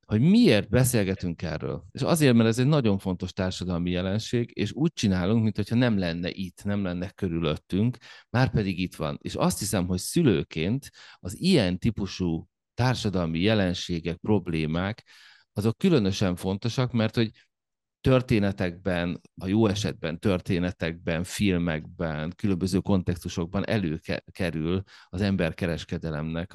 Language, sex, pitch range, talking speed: Hungarian, male, 85-110 Hz, 125 wpm